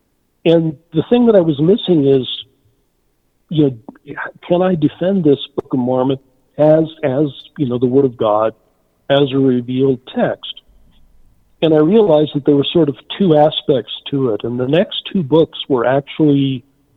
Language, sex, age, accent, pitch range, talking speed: English, male, 50-69, American, 125-155 Hz, 170 wpm